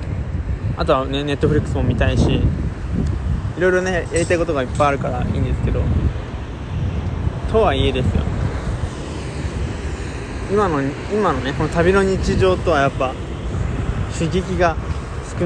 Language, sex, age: Japanese, male, 20-39